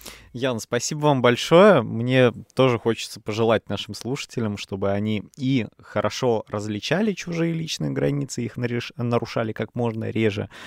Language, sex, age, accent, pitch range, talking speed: Russian, male, 20-39, native, 100-135 Hz, 130 wpm